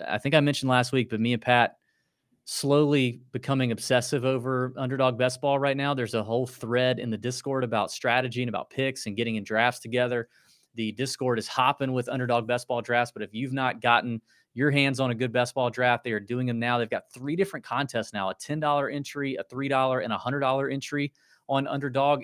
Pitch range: 115-135 Hz